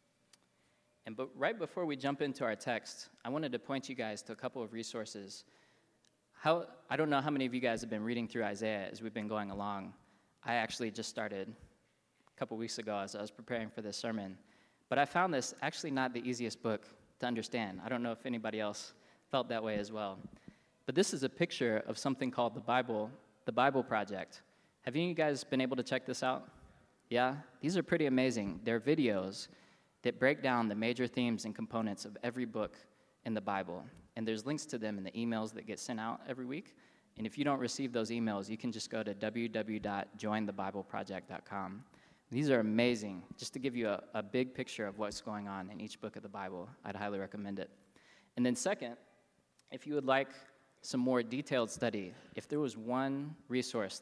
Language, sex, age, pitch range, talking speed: English, male, 20-39, 105-130 Hz, 210 wpm